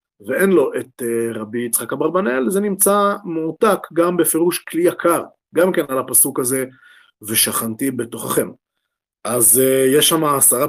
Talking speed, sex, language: 135 wpm, male, Hebrew